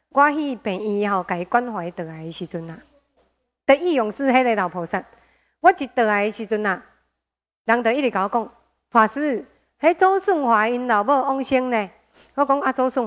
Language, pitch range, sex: Chinese, 210-275 Hz, female